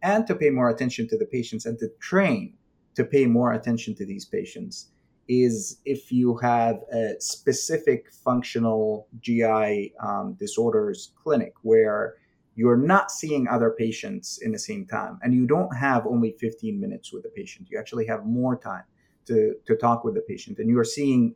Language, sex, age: English, male, 30-49